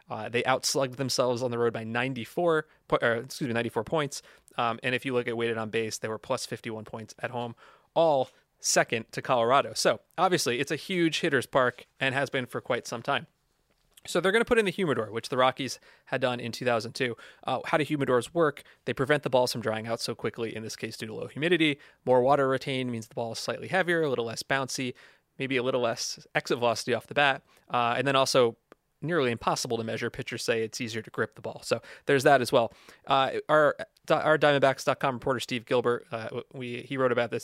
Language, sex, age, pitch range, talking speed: English, male, 30-49, 115-140 Hz, 225 wpm